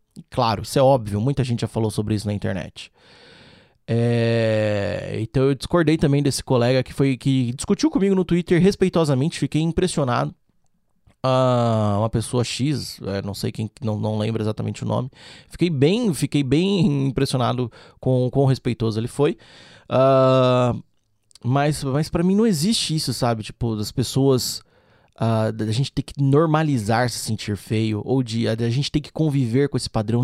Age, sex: 20-39, male